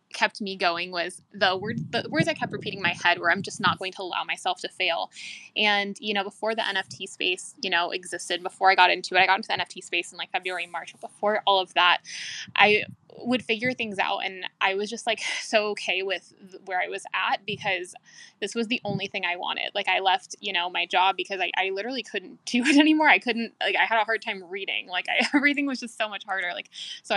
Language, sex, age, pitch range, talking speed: English, female, 10-29, 190-225 Hz, 245 wpm